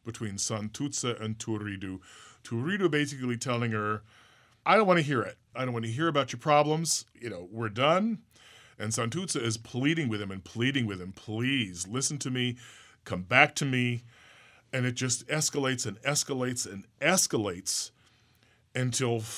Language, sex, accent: English, male, American